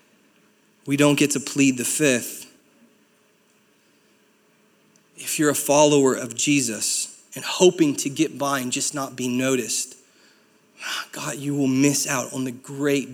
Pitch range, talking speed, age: 130-155 Hz, 140 wpm, 30-49